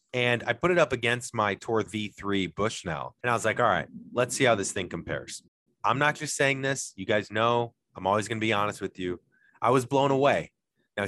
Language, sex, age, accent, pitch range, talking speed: English, male, 30-49, American, 105-140 Hz, 235 wpm